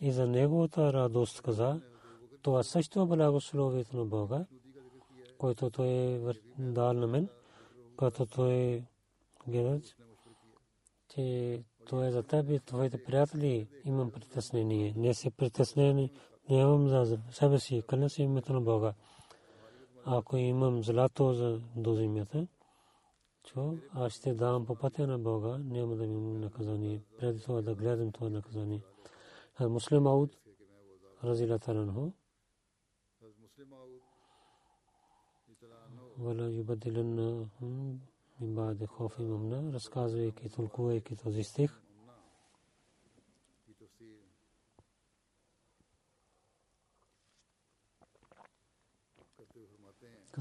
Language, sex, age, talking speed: Bulgarian, male, 40-59, 90 wpm